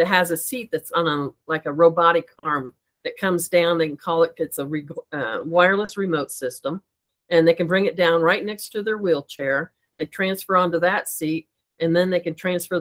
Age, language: 50-69, English